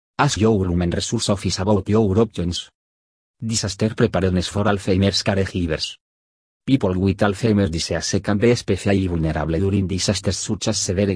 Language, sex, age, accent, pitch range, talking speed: English, male, 50-69, Spanish, 90-110 Hz, 140 wpm